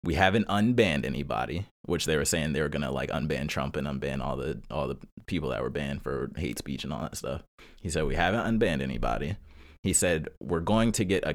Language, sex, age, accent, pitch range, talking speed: English, male, 20-39, American, 75-100 Hz, 240 wpm